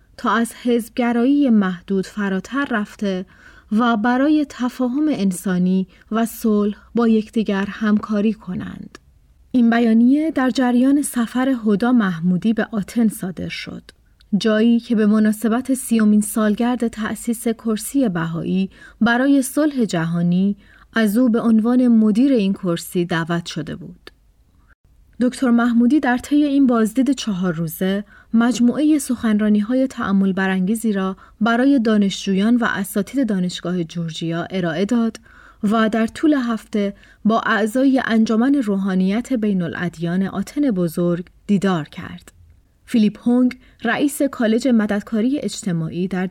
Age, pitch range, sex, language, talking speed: 30-49, 190-245 Hz, female, Persian, 115 wpm